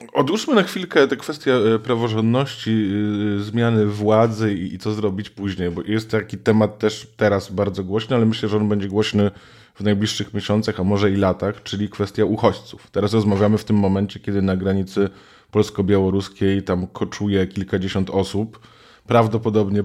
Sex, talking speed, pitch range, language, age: male, 155 wpm, 100-110 Hz, Polish, 20-39